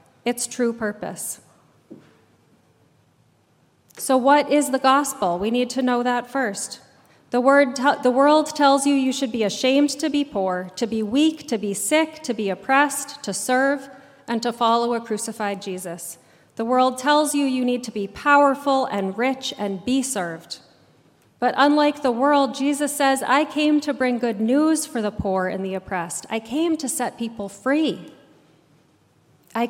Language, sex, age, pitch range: English, female, 30-49, 210-280 Hz